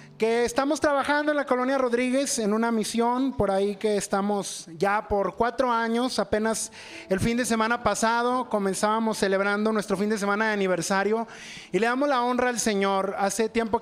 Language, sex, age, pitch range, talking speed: Spanish, male, 30-49, 225-270 Hz, 180 wpm